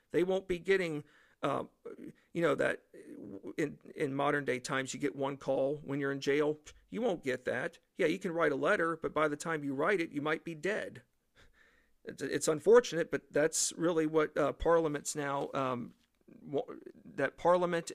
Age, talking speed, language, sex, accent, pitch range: 50-69, 175 wpm, English, male, American, 130-165 Hz